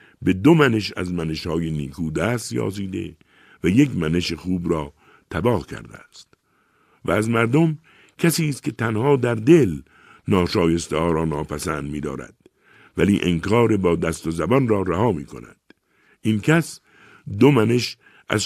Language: Persian